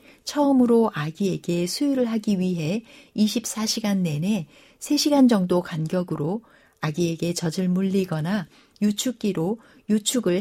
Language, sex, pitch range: Korean, female, 175-230 Hz